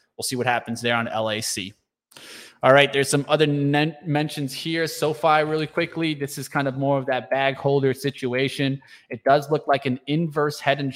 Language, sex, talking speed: English, male, 190 wpm